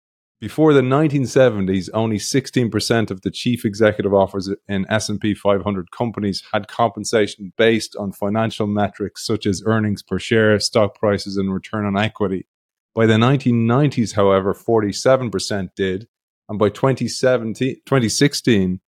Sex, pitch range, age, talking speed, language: male, 100-115 Hz, 30-49, 125 wpm, English